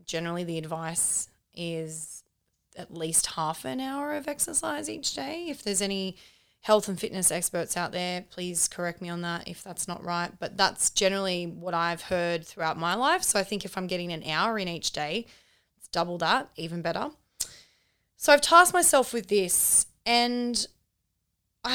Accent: Australian